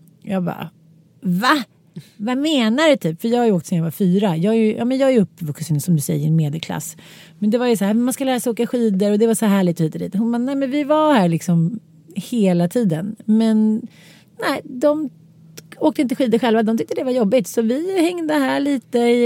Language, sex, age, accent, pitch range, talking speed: English, female, 30-49, Swedish, 175-245 Hz, 245 wpm